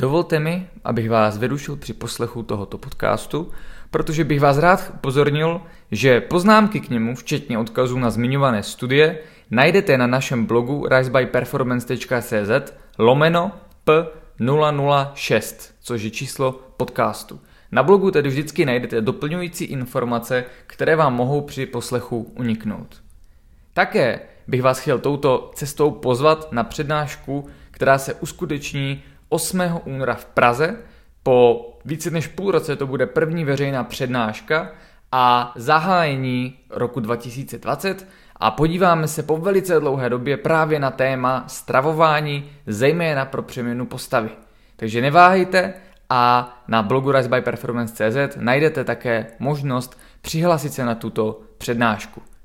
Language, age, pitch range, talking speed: Czech, 20-39, 120-155 Hz, 120 wpm